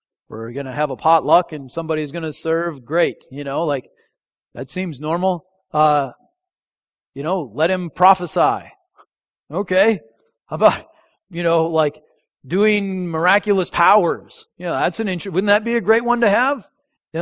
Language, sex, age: English, male, 40-59